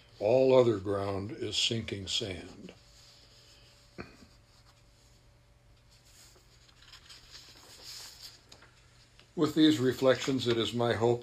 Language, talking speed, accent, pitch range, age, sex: English, 70 wpm, American, 110-125 Hz, 60-79, male